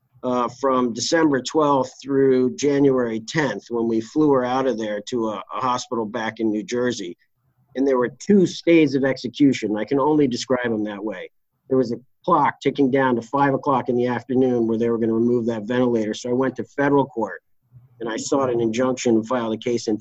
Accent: American